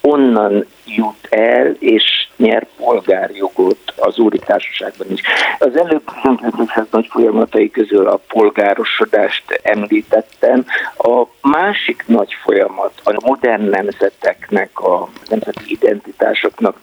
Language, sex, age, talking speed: Hungarian, male, 50-69, 100 wpm